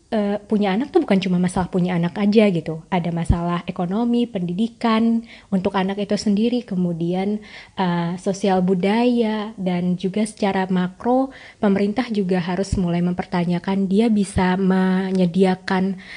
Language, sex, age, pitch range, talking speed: Indonesian, female, 20-39, 185-220 Hz, 130 wpm